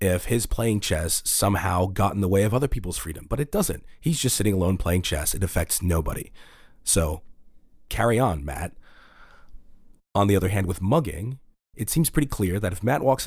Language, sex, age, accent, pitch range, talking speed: English, male, 30-49, American, 90-110 Hz, 195 wpm